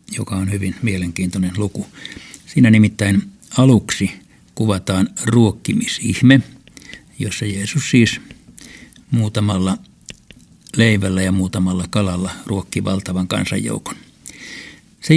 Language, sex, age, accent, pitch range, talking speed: Finnish, male, 60-79, native, 95-120 Hz, 85 wpm